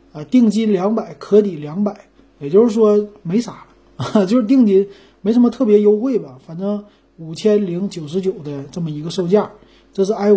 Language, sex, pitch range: Chinese, male, 160-215 Hz